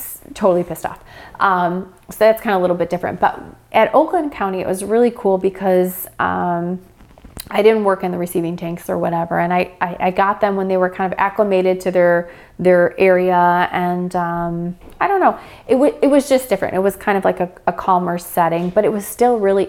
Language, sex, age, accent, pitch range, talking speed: English, female, 30-49, American, 175-215 Hz, 220 wpm